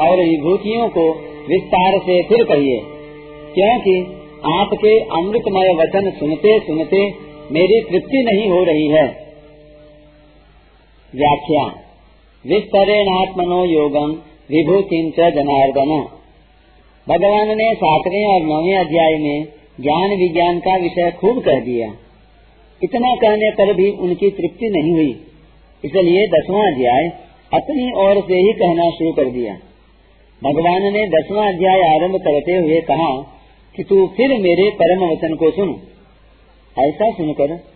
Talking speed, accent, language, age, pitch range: 120 wpm, native, Hindi, 50-69, 150-195 Hz